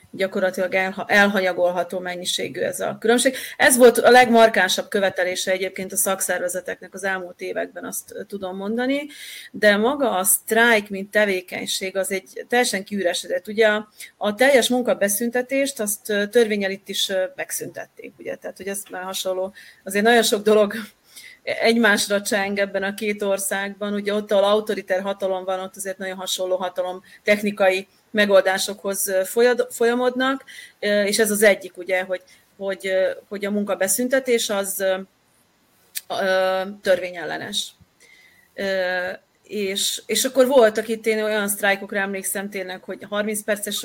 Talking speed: 125 wpm